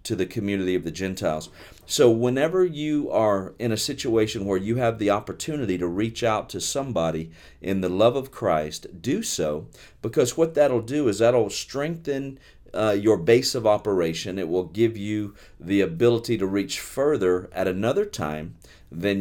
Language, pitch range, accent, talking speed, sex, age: English, 90-120 Hz, American, 170 wpm, male, 40-59